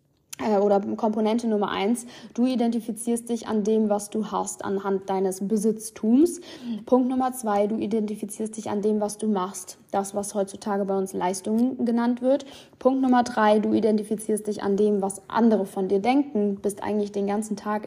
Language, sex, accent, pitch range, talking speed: German, female, German, 205-255 Hz, 180 wpm